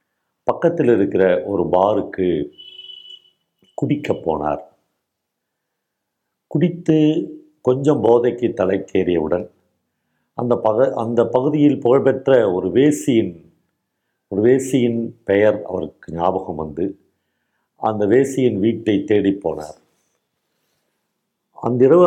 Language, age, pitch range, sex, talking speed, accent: Tamil, 50-69, 95-135 Hz, male, 75 wpm, native